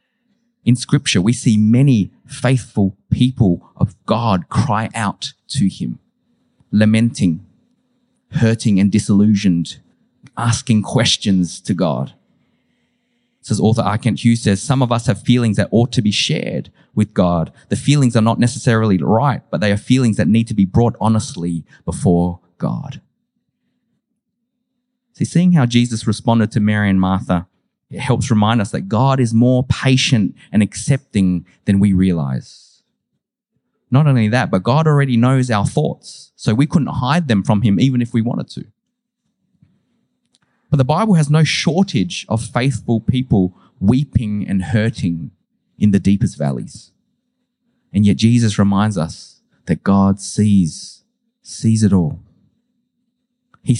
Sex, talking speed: male, 145 wpm